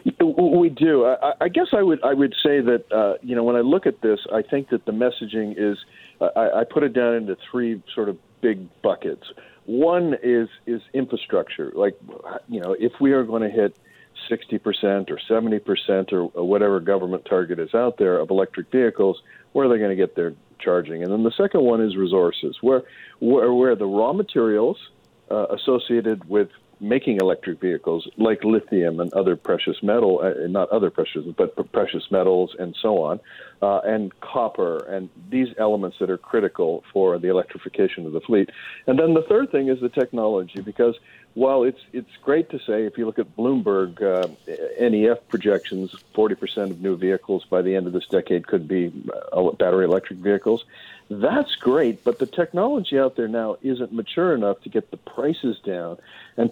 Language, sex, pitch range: English, male, 100-130 Hz